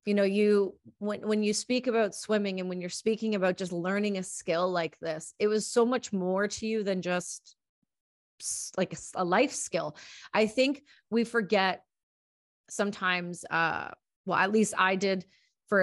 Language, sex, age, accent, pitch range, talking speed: English, female, 30-49, American, 185-215 Hz, 170 wpm